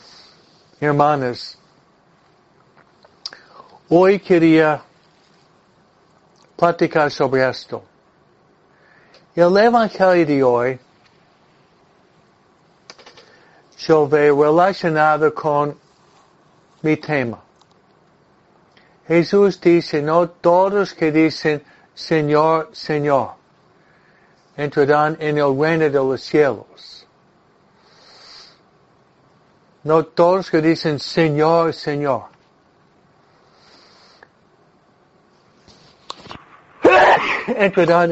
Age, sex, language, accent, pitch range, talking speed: 60-79, male, Spanish, American, 145-175 Hz, 60 wpm